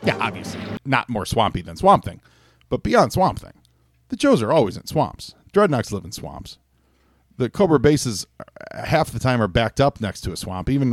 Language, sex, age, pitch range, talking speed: English, male, 40-59, 90-125 Hz, 200 wpm